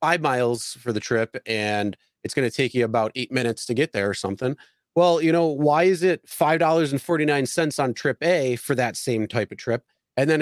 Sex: male